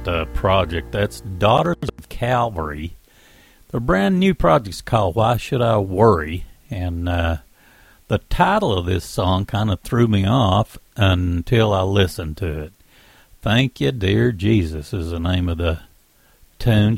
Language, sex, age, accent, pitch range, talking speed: English, male, 60-79, American, 90-120 Hz, 150 wpm